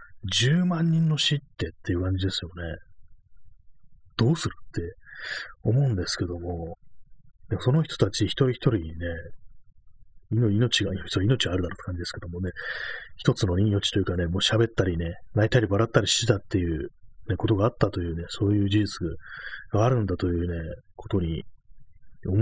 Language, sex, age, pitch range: Japanese, male, 30-49, 90-120 Hz